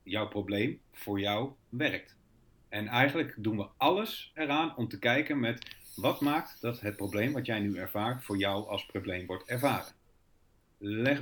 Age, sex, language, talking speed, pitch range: 40-59, male, Dutch, 165 wpm, 100-130 Hz